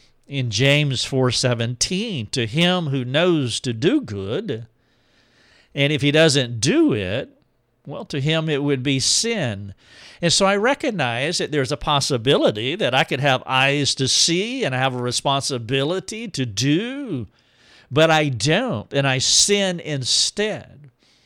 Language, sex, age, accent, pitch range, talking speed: English, male, 50-69, American, 125-150 Hz, 150 wpm